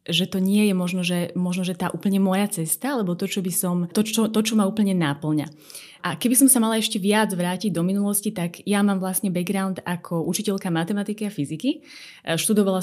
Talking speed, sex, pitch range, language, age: 190 wpm, female, 175-210 Hz, Slovak, 20-39